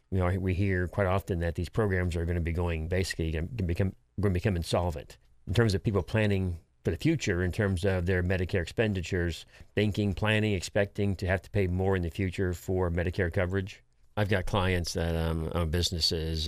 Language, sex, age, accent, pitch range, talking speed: English, male, 40-59, American, 85-100 Hz, 210 wpm